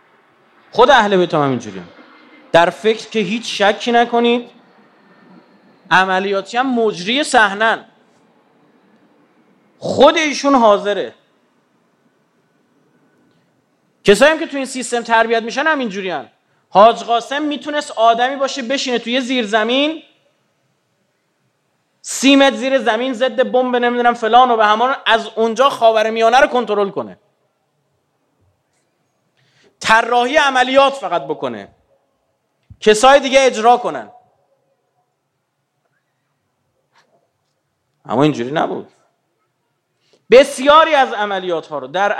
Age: 30-49